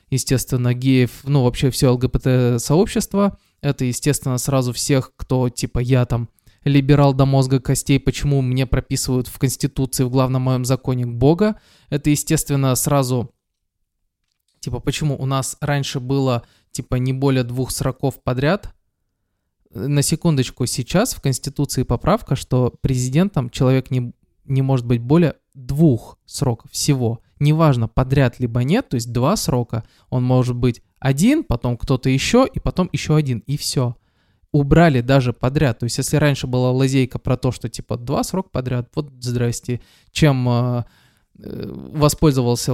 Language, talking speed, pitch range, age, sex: Russian, 145 wpm, 125-145 Hz, 20-39, male